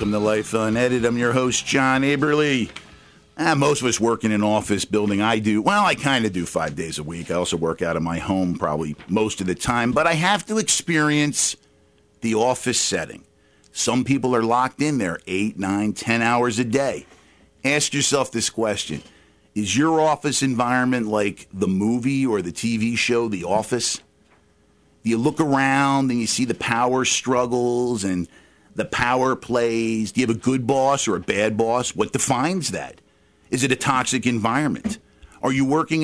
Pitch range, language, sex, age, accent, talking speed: 105-135 Hz, English, male, 50-69, American, 185 wpm